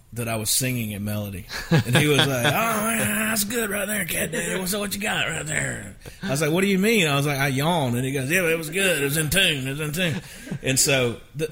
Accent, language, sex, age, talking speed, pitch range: American, English, male, 30-49, 270 wpm, 110-135 Hz